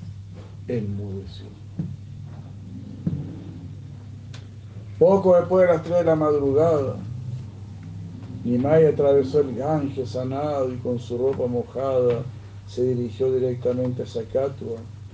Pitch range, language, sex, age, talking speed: 100-125 Hz, Spanish, male, 60-79, 100 wpm